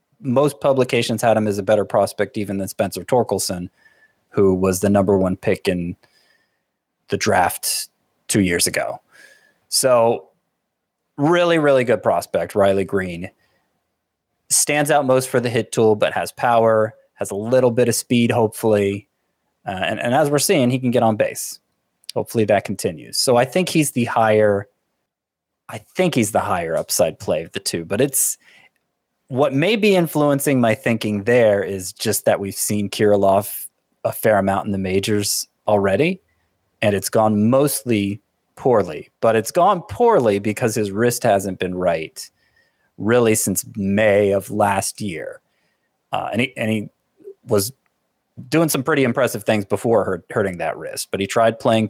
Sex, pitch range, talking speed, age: male, 100-125 Hz, 160 wpm, 20-39